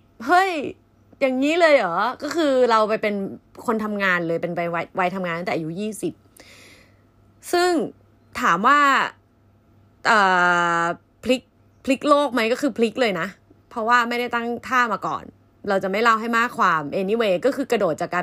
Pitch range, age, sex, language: 155-255 Hz, 20-39, female, Thai